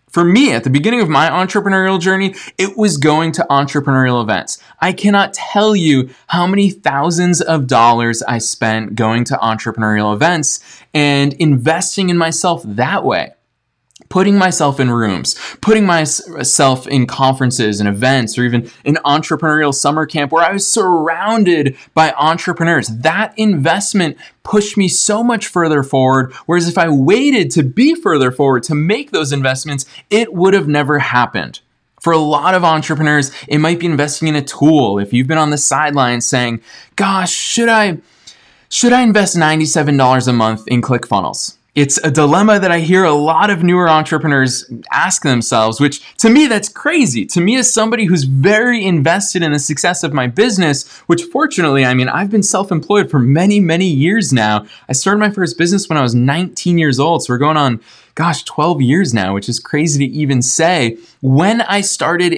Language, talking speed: English, 175 wpm